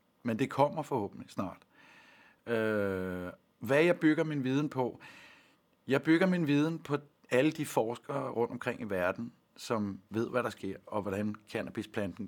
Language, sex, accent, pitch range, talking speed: Danish, male, native, 105-135 Hz, 155 wpm